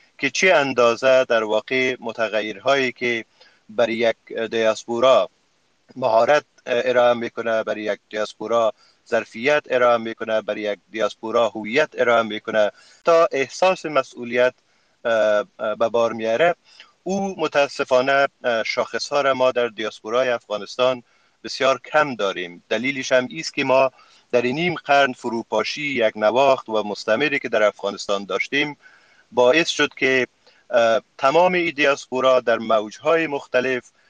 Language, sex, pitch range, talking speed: Persian, male, 115-140 Hz, 120 wpm